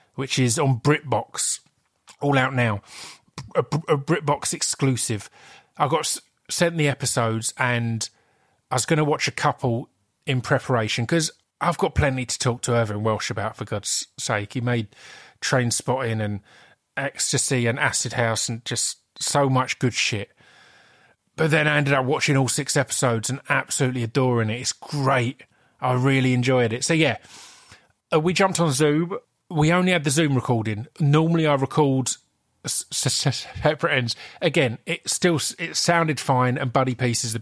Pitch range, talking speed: 120-150 Hz, 170 wpm